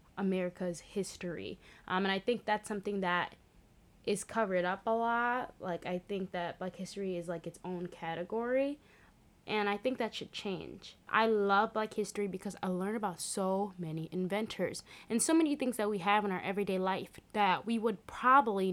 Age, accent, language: 20-39, American, English